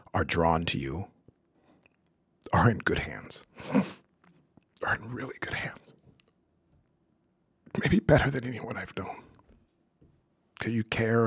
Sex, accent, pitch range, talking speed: male, American, 105-135 Hz, 115 wpm